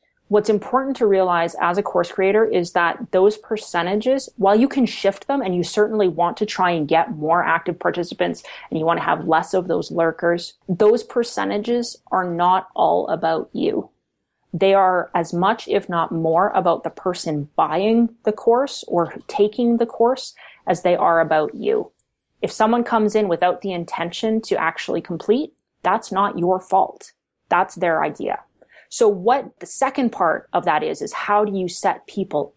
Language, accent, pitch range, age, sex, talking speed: English, American, 170-220 Hz, 30-49, female, 180 wpm